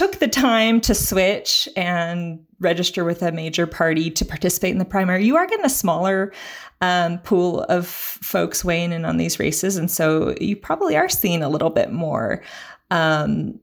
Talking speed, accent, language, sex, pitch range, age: 180 wpm, American, English, female, 155-195 Hz, 30-49